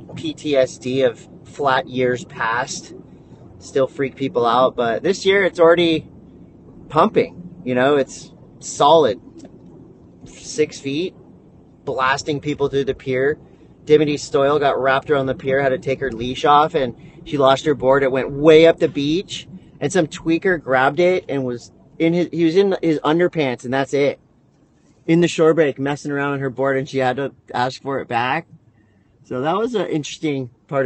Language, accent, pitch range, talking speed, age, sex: English, American, 130-165 Hz, 175 wpm, 30-49, male